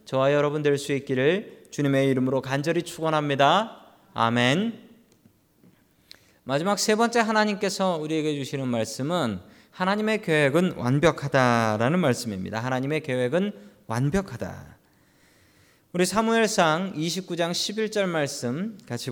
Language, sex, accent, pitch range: Korean, male, native, 125-190 Hz